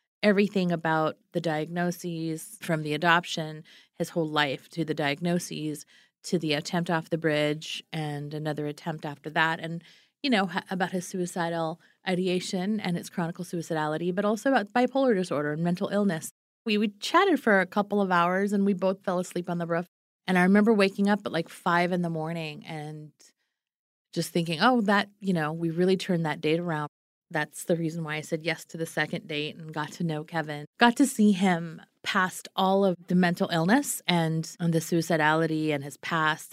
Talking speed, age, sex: 190 wpm, 30-49, female